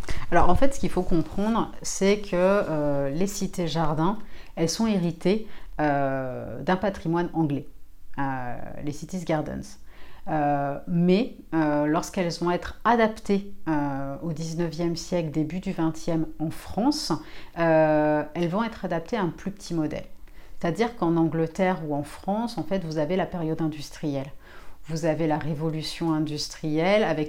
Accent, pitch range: French, 155-195 Hz